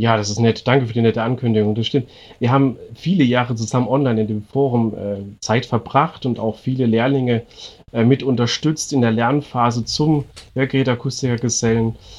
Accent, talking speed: German, 175 wpm